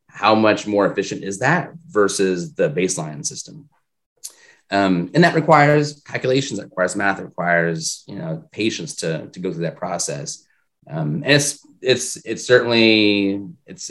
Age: 30-49